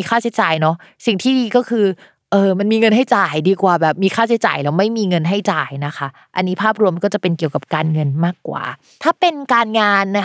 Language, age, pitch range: Thai, 20-39, 180-230 Hz